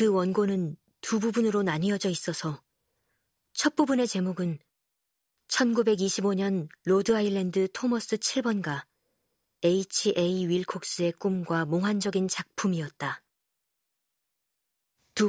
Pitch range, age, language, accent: 180-220 Hz, 40-59, Korean, native